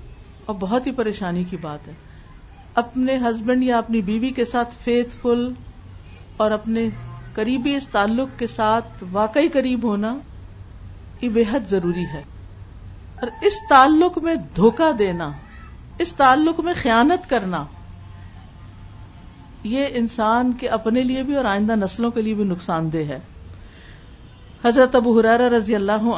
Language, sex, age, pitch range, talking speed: Urdu, female, 50-69, 175-250 Hz, 140 wpm